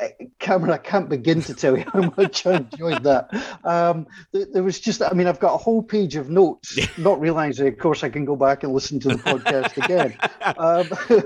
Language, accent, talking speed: English, British, 215 wpm